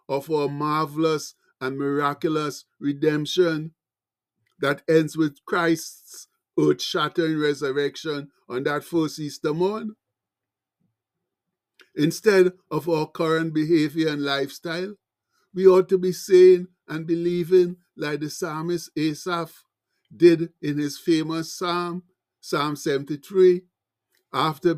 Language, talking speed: English, 105 wpm